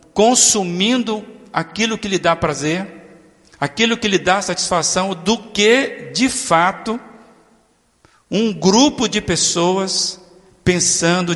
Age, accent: 50-69, Brazilian